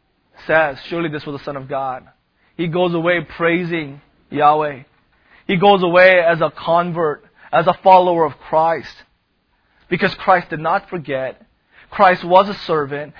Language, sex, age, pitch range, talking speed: English, male, 30-49, 145-185 Hz, 150 wpm